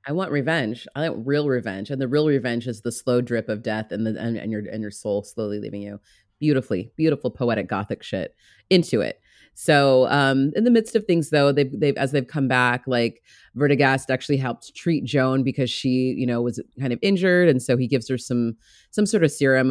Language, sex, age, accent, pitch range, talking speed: English, female, 30-49, American, 120-160 Hz, 220 wpm